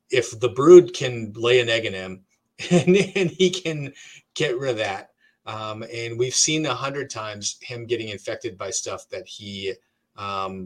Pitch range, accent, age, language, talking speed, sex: 100-125 Hz, American, 30-49, English, 180 wpm, male